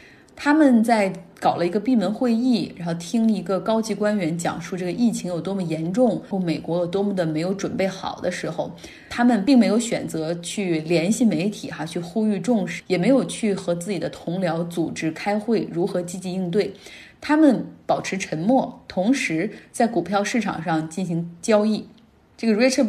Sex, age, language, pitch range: female, 20-39, Chinese, 175-230 Hz